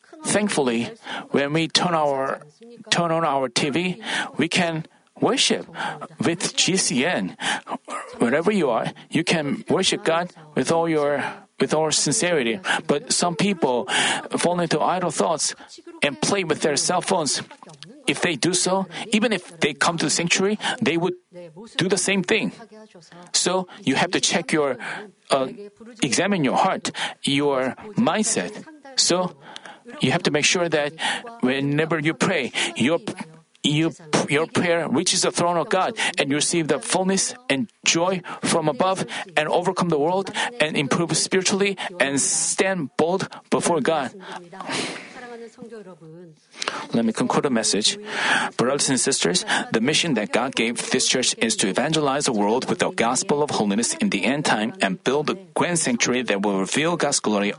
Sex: male